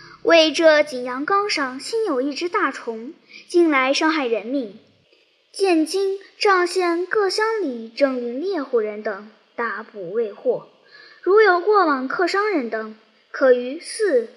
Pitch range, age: 240-390 Hz, 10-29